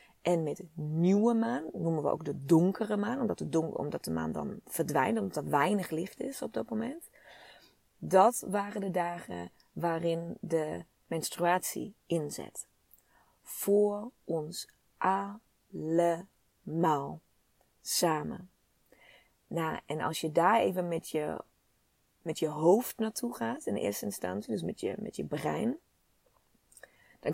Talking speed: 140 wpm